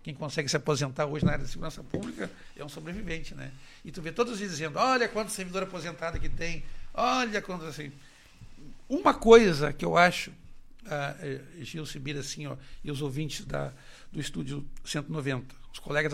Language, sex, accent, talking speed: Portuguese, male, Brazilian, 180 wpm